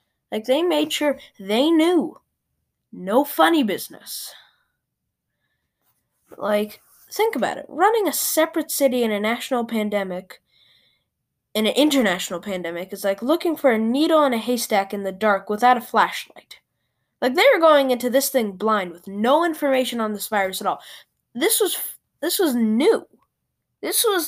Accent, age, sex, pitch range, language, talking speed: American, 10-29, female, 200-290 Hz, English, 155 wpm